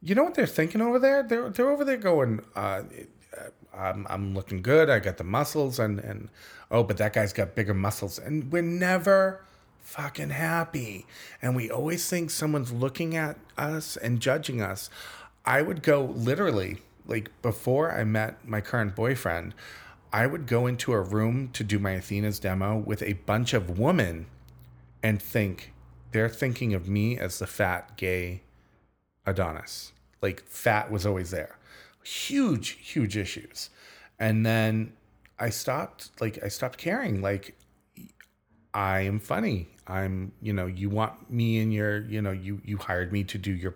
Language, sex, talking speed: English, male, 165 wpm